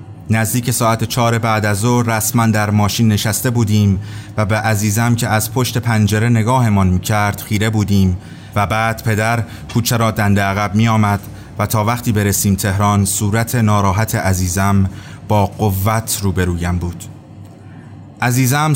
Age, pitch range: 30-49, 100-120 Hz